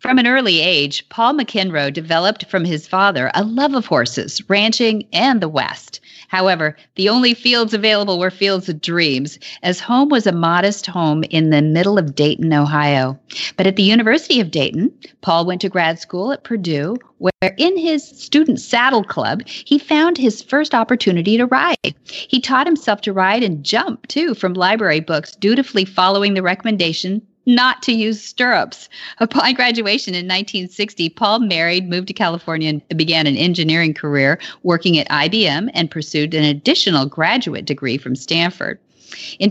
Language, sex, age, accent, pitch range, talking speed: English, female, 40-59, American, 165-235 Hz, 165 wpm